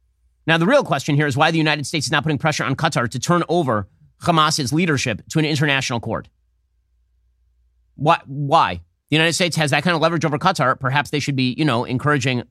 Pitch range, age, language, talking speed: 115-160 Hz, 30-49, English, 210 wpm